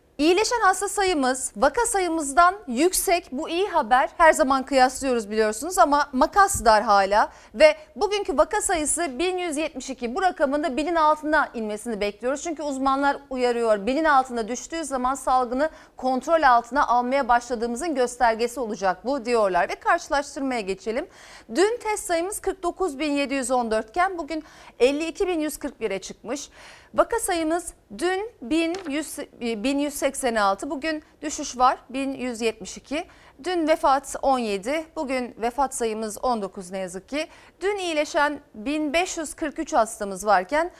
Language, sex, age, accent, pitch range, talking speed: Turkish, female, 40-59, native, 245-330 Hz, 120 wpm